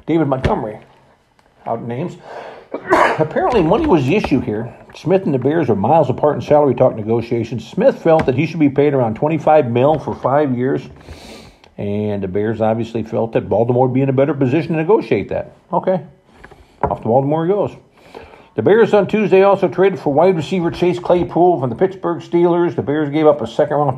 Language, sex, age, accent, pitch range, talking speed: English, male, 50-69, American, 120-155 Hz, 190 wpm